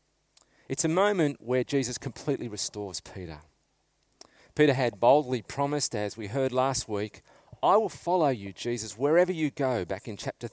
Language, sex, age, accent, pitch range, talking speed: English, male, 40-59, Australian, 105-145 Hz, 160 wpm